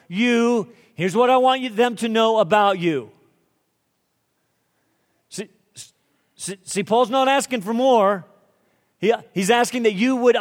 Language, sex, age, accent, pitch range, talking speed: English, male, 40-59, American, 180-230 Hz, 125 wpm